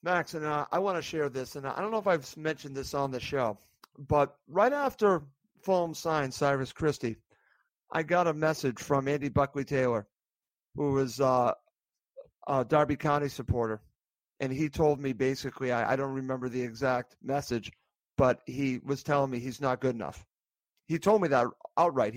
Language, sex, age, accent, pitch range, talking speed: English, male, 50-69, American, 135-170 Hz, 180 wpm